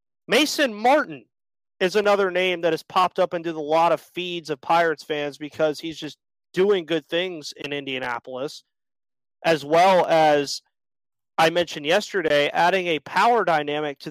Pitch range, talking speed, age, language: 150-190 Hz, 155 wpm, 30-49, English